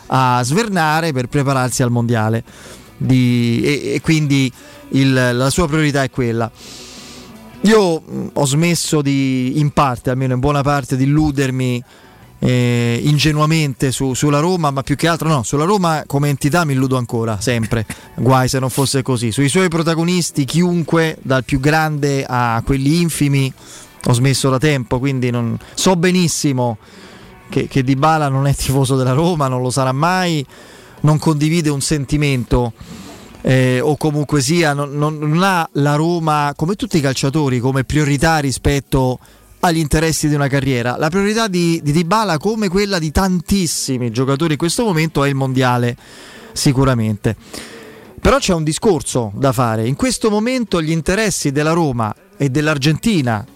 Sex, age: male, 30-49